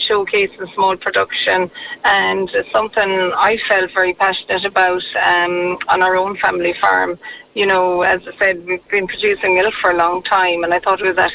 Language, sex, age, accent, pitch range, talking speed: English, female, 20-39, Irish, 180-205 Hz, 195 wpm